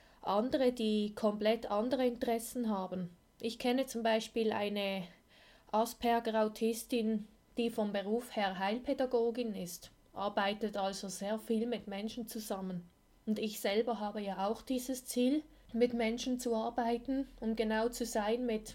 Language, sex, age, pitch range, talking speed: German, female, 20-39, 210-240 Hz, 135 wpm